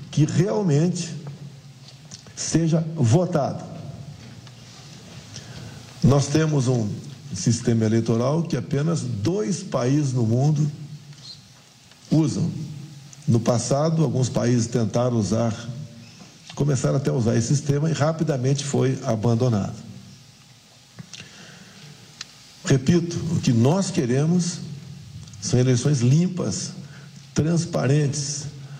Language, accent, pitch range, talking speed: Portuguese, Brazilian, 130-160 Hz, 85 wpm